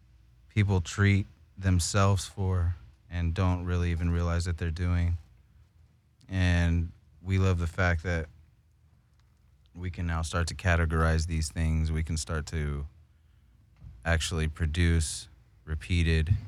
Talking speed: 120 wpm